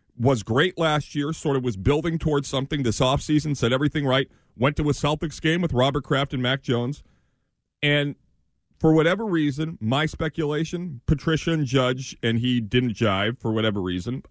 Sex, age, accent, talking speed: male, 40-59, American, 175 wpm